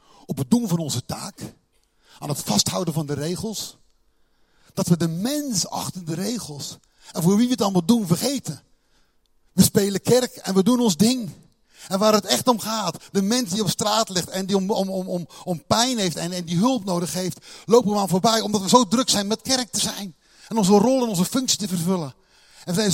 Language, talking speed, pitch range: Dutch, 225 wpm, 170-215 Hz